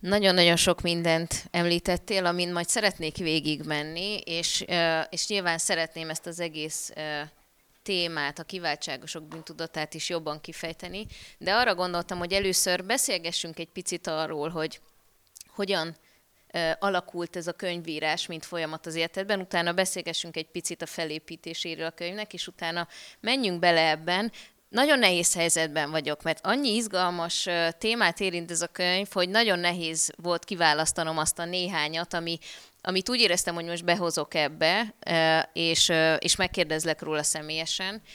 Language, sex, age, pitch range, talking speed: Hungarian, female, 20-39, 165-185 Hz, 135 wpm